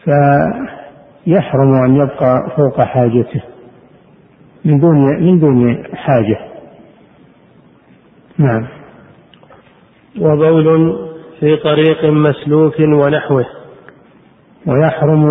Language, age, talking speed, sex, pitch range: Arabic, 60-79, 65 wpm, male, 135-150 Hz